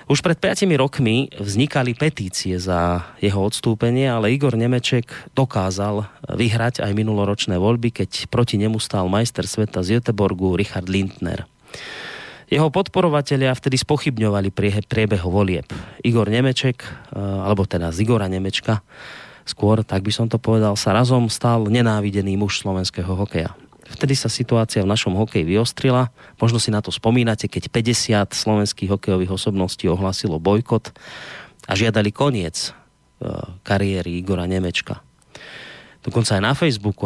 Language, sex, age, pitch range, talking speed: Slovak, male, 30-49, 95-120 Hz, 135 wpm